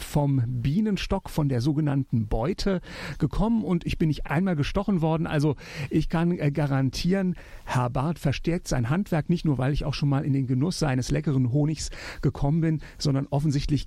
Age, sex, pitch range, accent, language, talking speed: 50-69, male, 140-180 Hz, German, German, 175 wpm